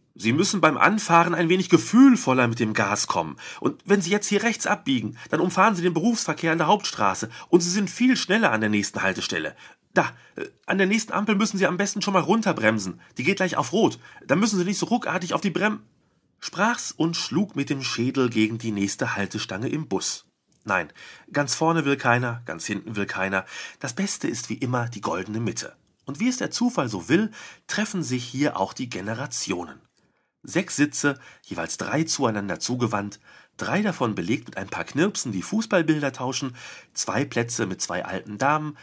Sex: male